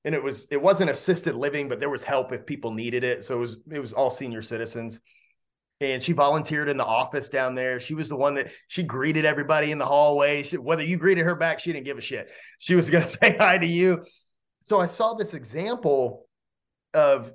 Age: 30-49